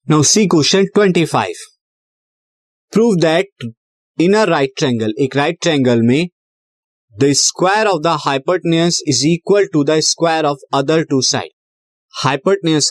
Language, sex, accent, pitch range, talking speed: Hindi, male, native, 130-175 Hz, 130 wpm